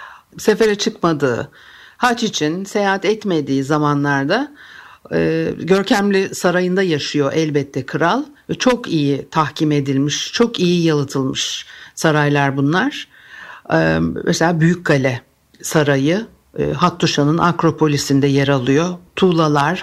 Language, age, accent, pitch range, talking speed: Turkish, 60-79, native, 150-185 Hz, 105 wpm